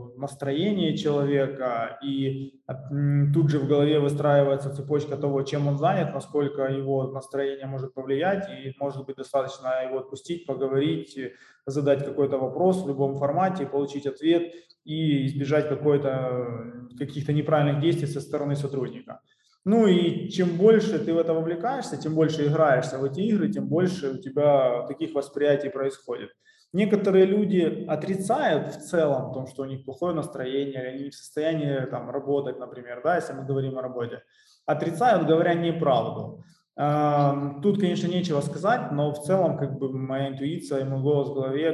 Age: 20-39